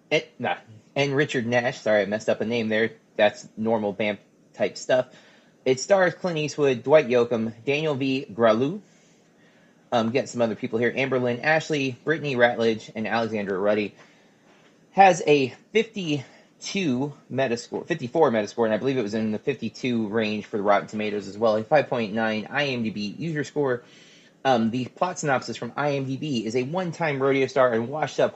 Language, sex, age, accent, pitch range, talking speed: English, male, 30-49, American, 115-145 Hz, 165 wpm